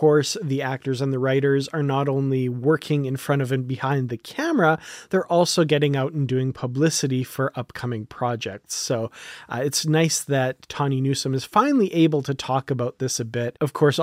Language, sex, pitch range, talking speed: English, male, 130-160 Hz, 195 wpm